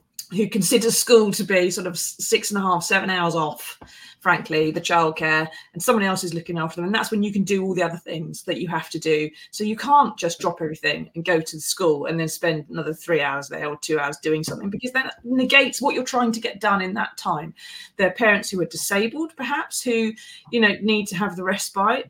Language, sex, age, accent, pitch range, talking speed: English, female, 30-49, British, 175-240 Hz, 240 wpm